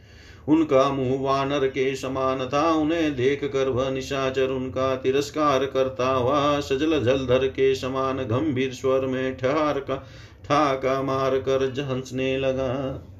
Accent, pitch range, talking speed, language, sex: native, 120-145 Hz, 125 wpm, Hindi, male